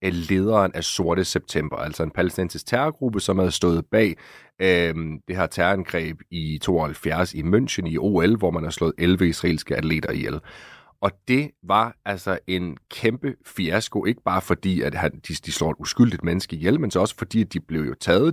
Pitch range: 90-115 Hz